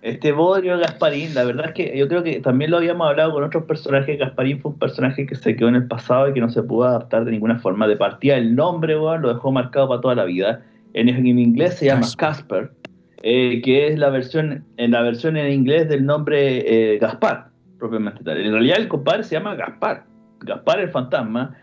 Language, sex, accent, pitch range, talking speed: Spanish, male, Argentinian, 120-155 Hz, 220 wpm